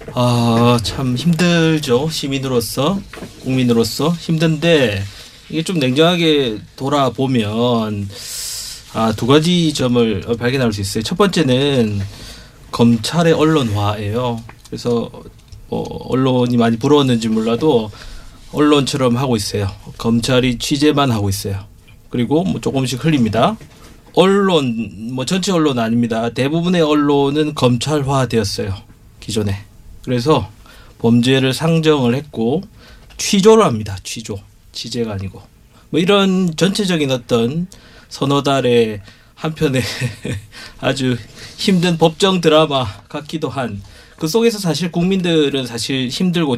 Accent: native